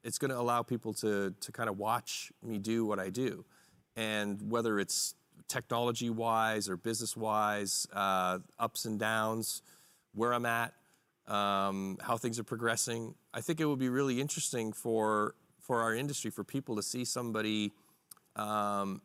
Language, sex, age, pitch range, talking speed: English, male, 40-59, 105-120 Hz, 160 wpm